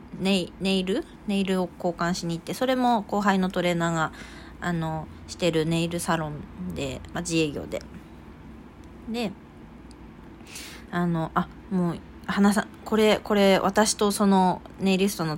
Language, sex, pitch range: Japanese, female, 170-205 Hz